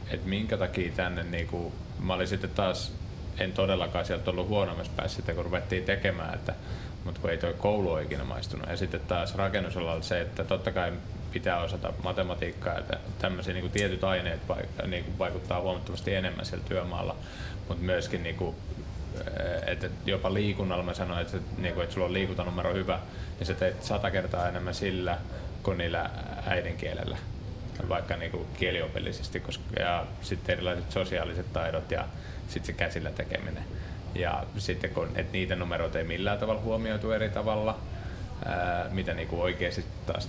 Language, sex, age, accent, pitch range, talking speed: Finnish, male, 20-39, native, 90-100 Hz, 155 wpm